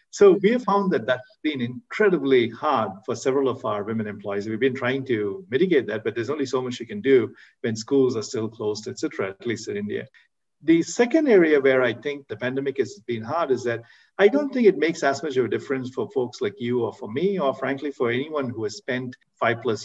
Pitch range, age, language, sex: 120-190 Hz, 50-69, English, male